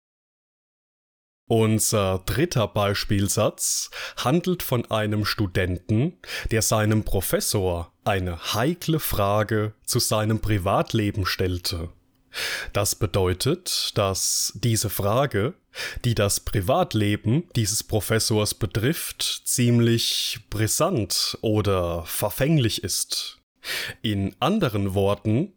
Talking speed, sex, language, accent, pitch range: 85 wpm, male, German, German, 100-120 Hz